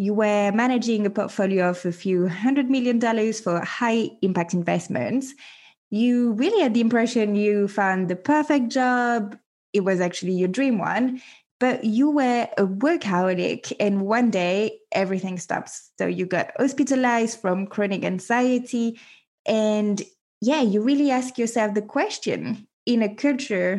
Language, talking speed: English, 150 wpm